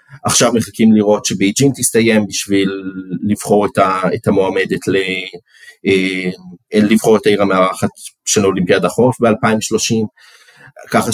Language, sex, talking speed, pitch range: Hebrew, male, 115 wpm, 100-115 Hz